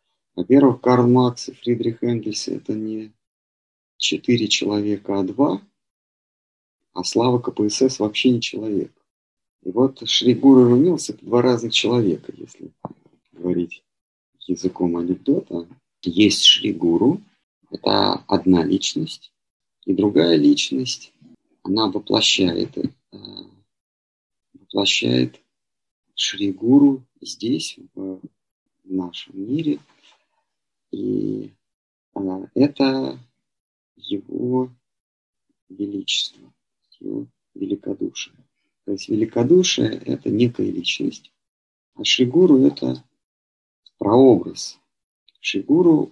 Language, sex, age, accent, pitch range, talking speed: Russian, male, 40-59, native, 95-130 Hz, 85 wpm